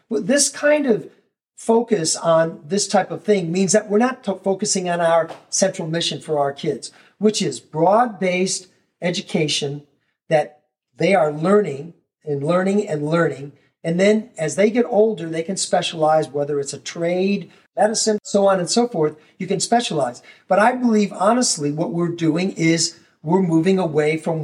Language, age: English, 50-69